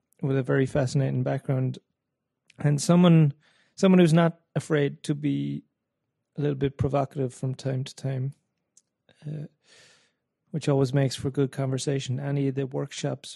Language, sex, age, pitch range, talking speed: English, male, 30-49, 130-155 Hz, 145 wpm